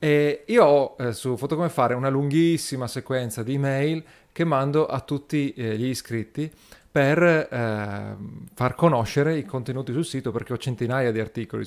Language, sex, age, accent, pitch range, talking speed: Italian, male, 30-49, native, 115-145 Hz, 165 wpm